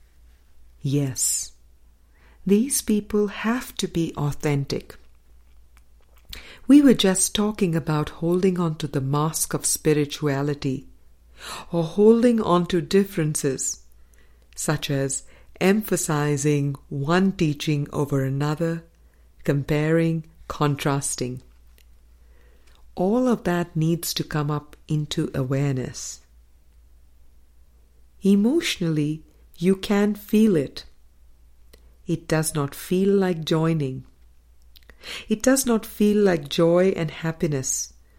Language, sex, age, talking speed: English, female, 50-69, 95 wpm